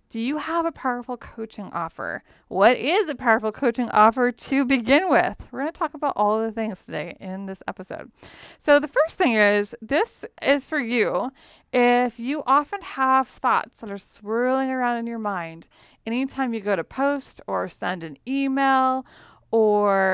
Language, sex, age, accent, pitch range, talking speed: English, female, 30-49, American, 205-270 Hz, 180 wpm